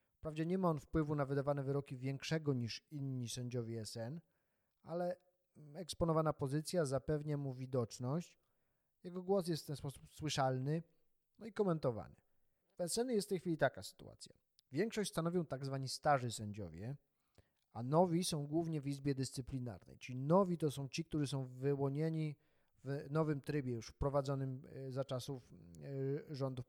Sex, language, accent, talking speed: male, Polish, native, 145 wpm